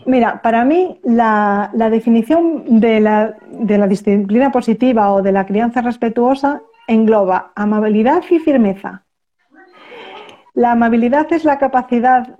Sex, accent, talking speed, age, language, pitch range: female, Spanish, 120 wpm, 40-59, Spanish, 205-260 Hz